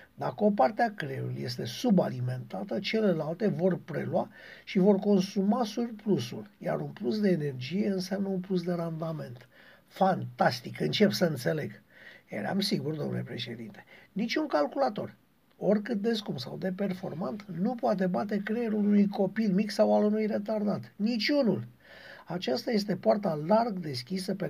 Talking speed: 145 wpm